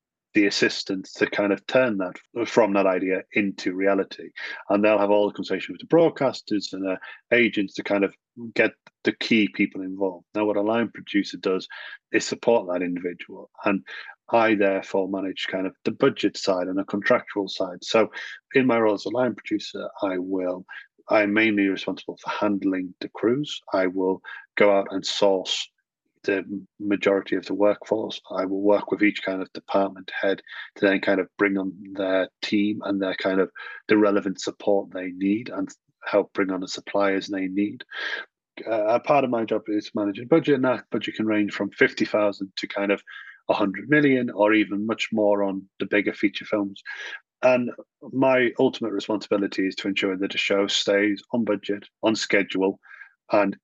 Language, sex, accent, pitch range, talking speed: English, male, British, 95-110 Hz, 180 wpm